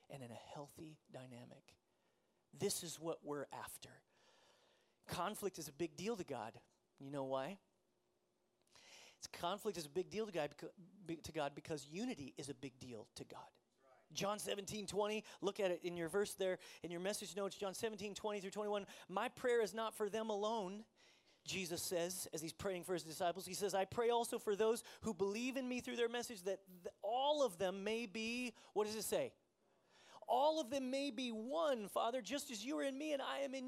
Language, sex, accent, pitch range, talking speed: English, male, American, 170-230 Hz, 200 wpm